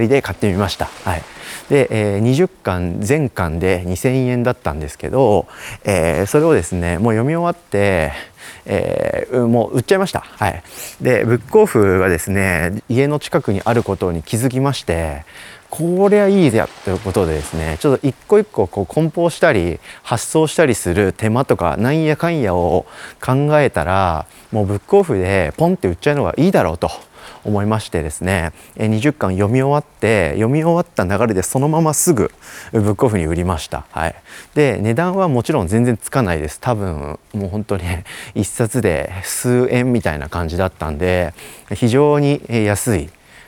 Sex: male